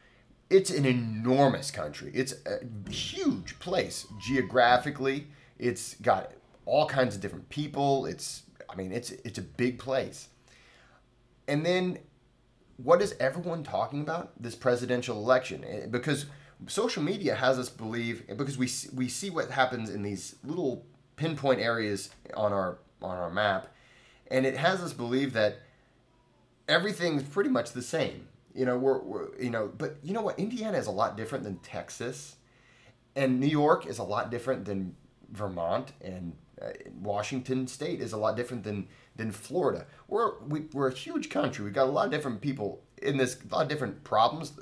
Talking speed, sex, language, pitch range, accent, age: 170 wpm, male, English, 110-140 Hz, American, 30-49